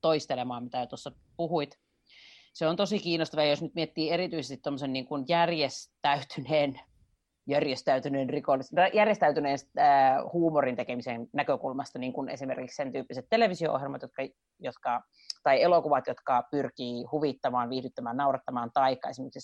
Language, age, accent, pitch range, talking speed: Finnish, 30-49, native, 135-160 Hz, 115 wpm